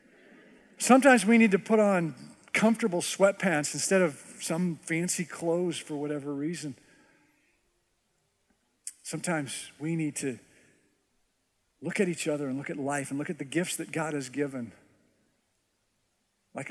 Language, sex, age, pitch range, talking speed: English, male, 50-69, 130-185 Hz, 135 wpm